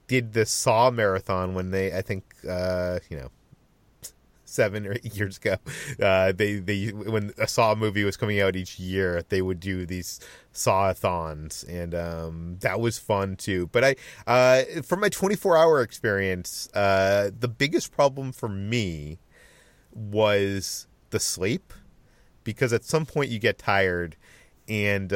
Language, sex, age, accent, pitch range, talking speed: English, male, 30-49, American, 95-125 Hz, 155 wpm